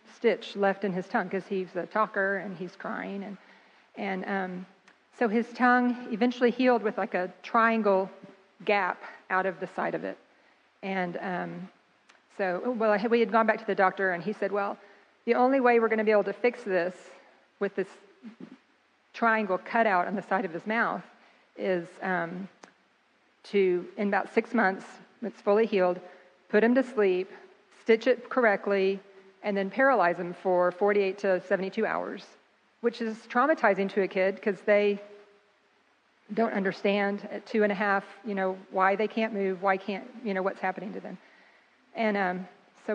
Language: English